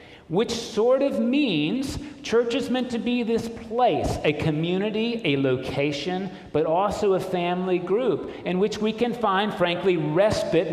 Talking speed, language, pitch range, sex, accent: 150 wpm, English, 125-185 Hz, male, American